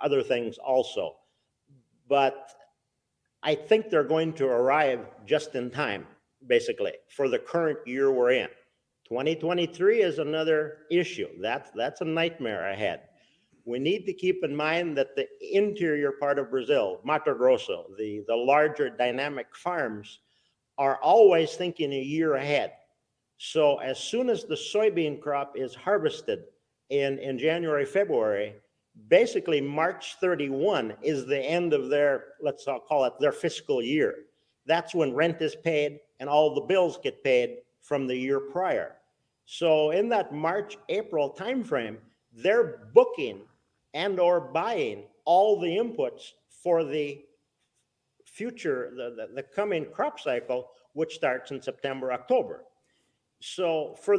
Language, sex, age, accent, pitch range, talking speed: English, male, 50-69, American, 140-225 Hz, 140 wpm